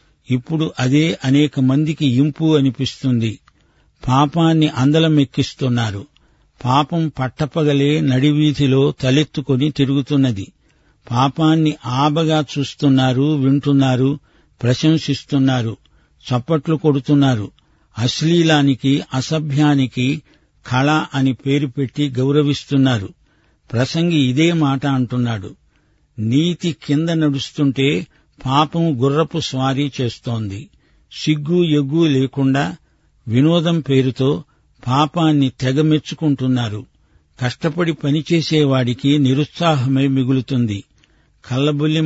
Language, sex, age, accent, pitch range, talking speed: Telugu, male, 50-69, native, 130-150 Hz, 70 wpm